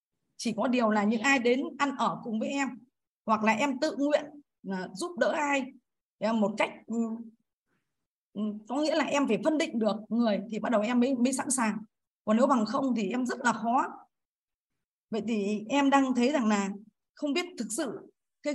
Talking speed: 195 wpm